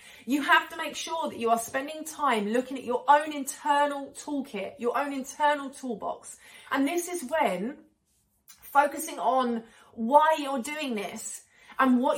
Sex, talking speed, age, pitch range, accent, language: female, 160 wpm, 30-49, 230-295 Hz, British, English